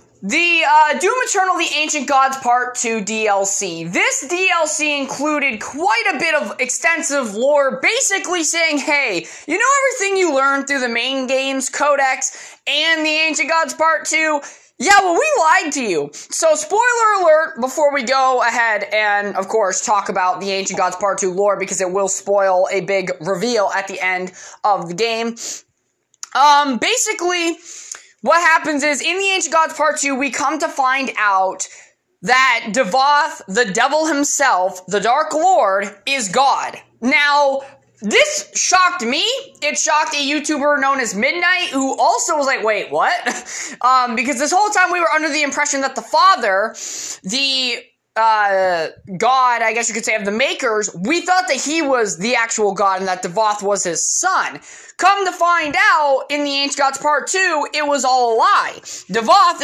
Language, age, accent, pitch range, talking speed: English, 20-39, American, 225-315 Hz, 175 wpm